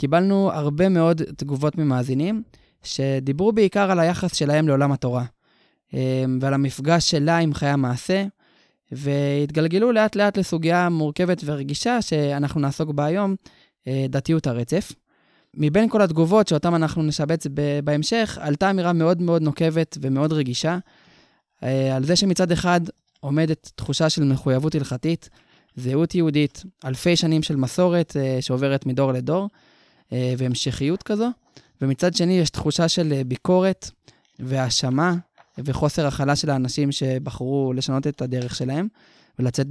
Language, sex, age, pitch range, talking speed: Hebrew, male, 20-39, 135-170 Hz, 120 wpm